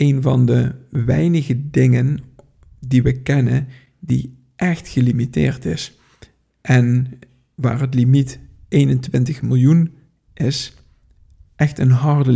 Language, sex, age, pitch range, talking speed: Dutch, male, 50-69, 125-135 Hz, 105 wpm